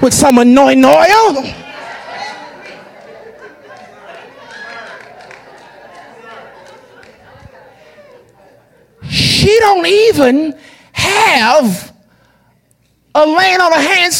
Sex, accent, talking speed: male, American, 55 wpm